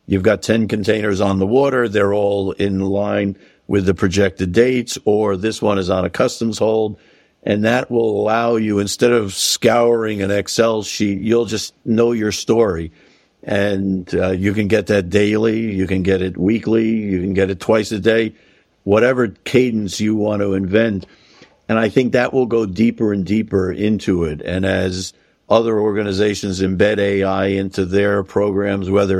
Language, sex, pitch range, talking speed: English, male, 95-110 Hz, 175 wpm